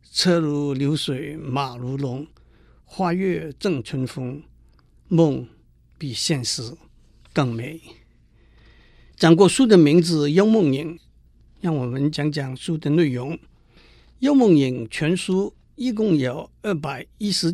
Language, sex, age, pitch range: Chinese, male, 60-79, 135-170 Hz